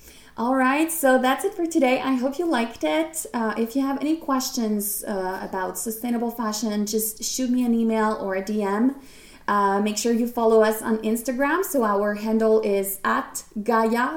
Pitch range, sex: 205-260 Hz, female